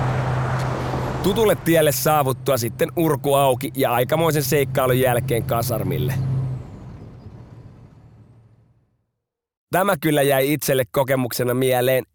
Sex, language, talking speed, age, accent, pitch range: male, Finnish, 85 wpm, 30-49, native, 125-155 Hz